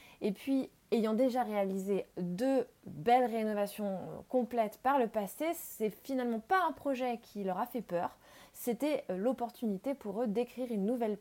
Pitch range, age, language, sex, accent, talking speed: 190-250 Hz, 20-39, French, female, French, 160 wpm